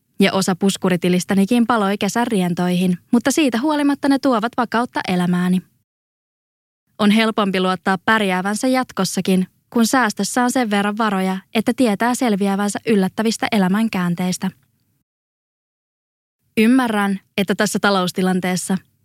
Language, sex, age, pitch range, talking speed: Finnish, female, 20-39, 185-230 Hz, 105 wpm